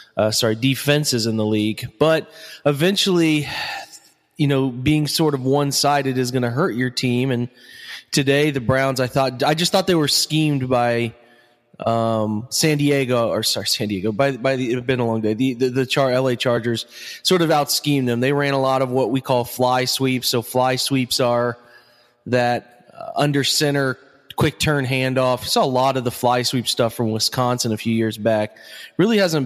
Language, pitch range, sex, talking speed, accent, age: English, 120-145 Hz, male, 190 wpm, American, 20-39